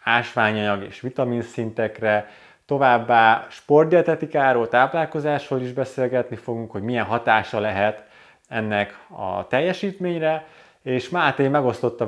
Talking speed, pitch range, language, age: 95 wpm, 110-130 Hz, Hungarian, 20-39